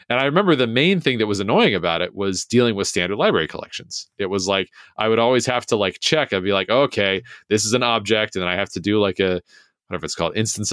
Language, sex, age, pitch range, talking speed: English, male, 30-49, 95-125 Hz, 280 wpm